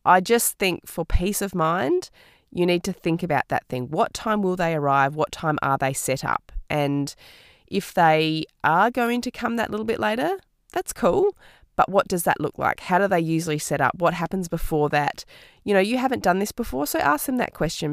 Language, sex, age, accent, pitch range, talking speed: English, female, 20-39, Australian, 145-190 Hz, 220 wpm